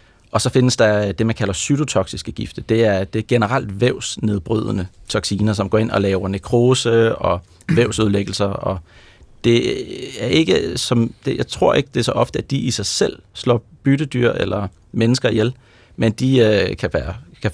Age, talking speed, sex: 30-49, 180 wpm, male